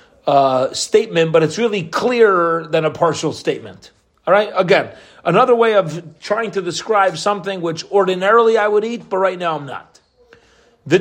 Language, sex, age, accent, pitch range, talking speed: English, male, 40-59, American, 160-210 Hz, 170 wpm